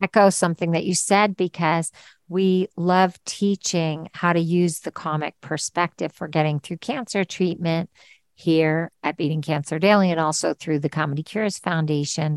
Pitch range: 155-185 Hz